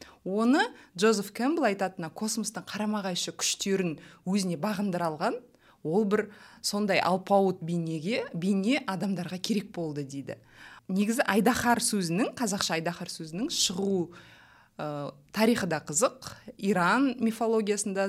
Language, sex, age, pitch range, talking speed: Russian, female, 20-39, 165-220 Hz, 105 wpm